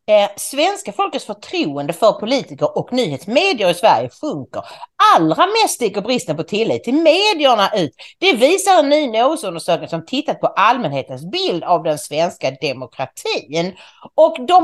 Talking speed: 150 wpm